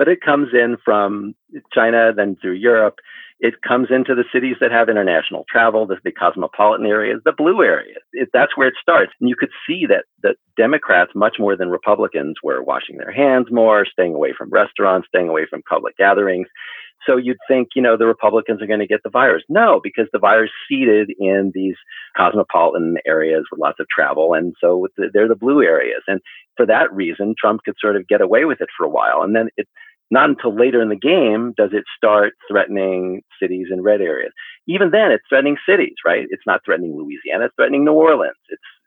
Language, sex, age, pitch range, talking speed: English, male, 50-69, 105-145 Hz, 210 wpm